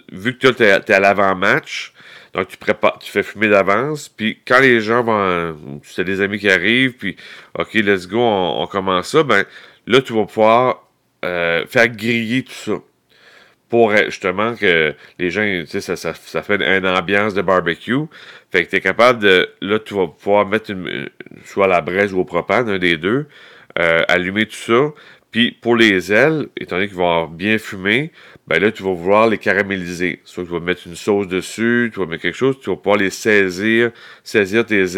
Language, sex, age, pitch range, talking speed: French, male, 30-49, 90-115 Hz, 210 wpm